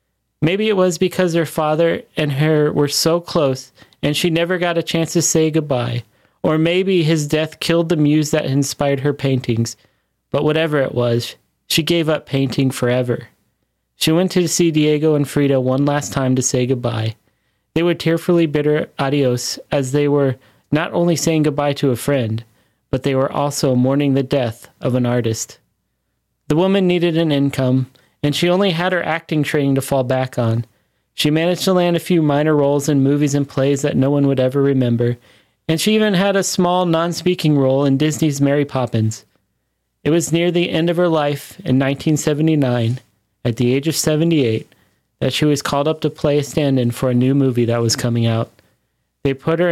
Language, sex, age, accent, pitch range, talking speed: English, male, 30-49, American, 130-160 Hz, 190 wpm